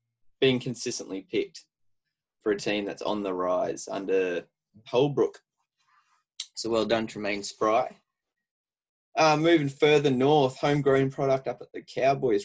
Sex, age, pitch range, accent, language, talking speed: male, 20-39, 100-135 Hz, Australian, English, 130 wpm